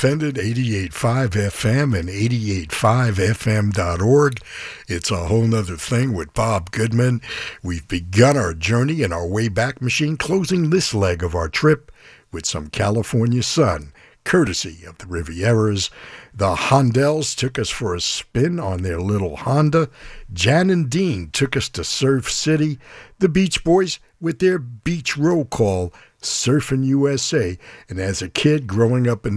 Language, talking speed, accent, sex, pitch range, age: English, 145 wpm, American, male, 90-135 Hz, 60-79